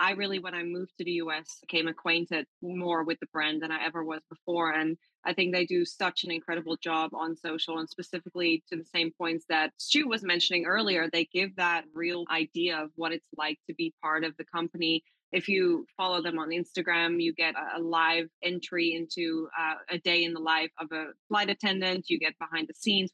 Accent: American